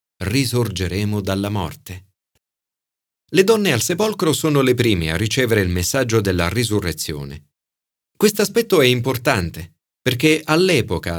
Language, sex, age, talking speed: Italian, male, 30-49, 120 wpm